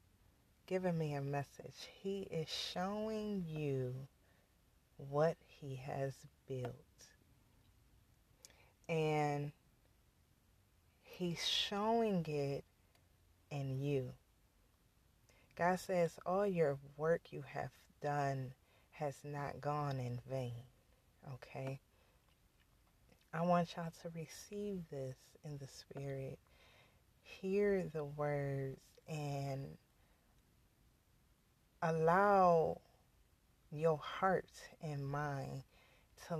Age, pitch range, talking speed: 30-49, 135-170 Hz, 85 wpm